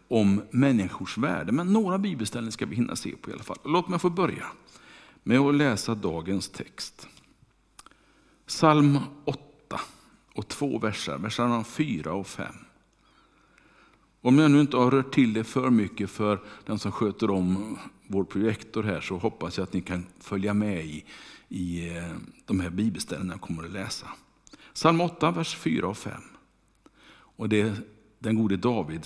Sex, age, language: male, 50-69, Swedish